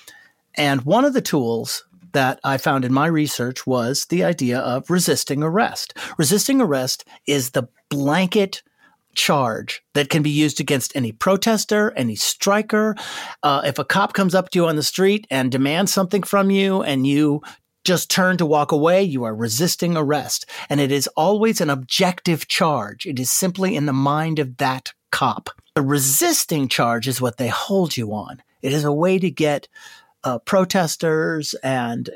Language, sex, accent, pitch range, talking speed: English, male, American, 140-205 Hz, 175 wpm